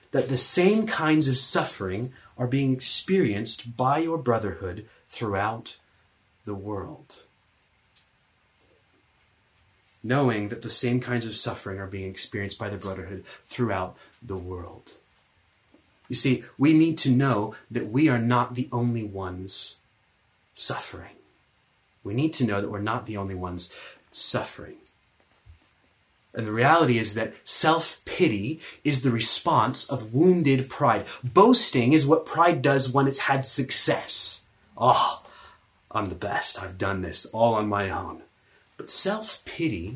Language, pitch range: English, 105-155 Hz